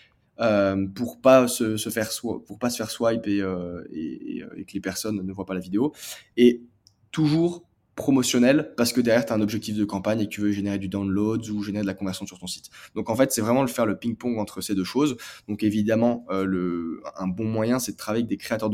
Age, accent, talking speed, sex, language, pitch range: 20-39, French, 250 wpm, male, French, 95-110 Hz